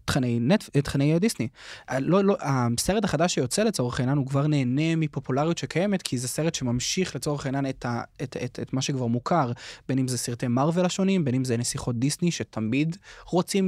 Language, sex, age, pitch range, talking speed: Hebrew, male, 20-39, 125-170 Hz, 170 wpm